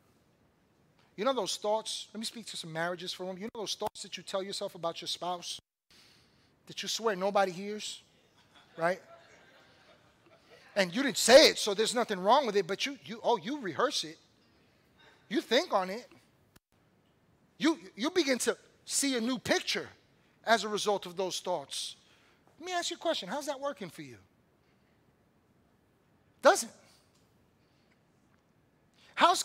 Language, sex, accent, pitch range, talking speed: English, male, American, 220-320 Hz, 160 wpm